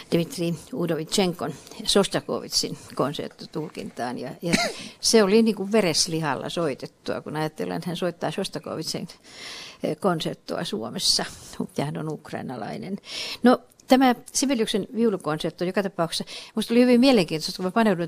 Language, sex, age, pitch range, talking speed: Finnish, female, 60-79, 160-215 Hz, 115 wpm